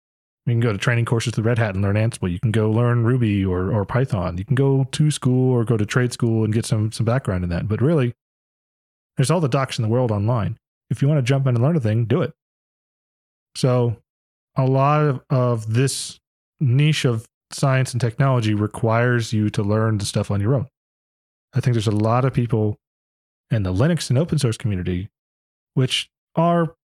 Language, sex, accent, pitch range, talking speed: English, male, American, 105-135 Hz, 210 wpm